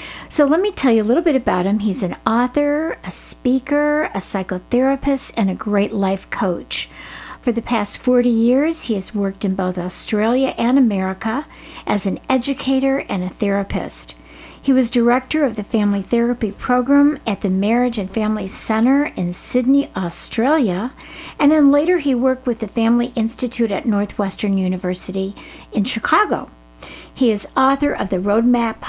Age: 50-69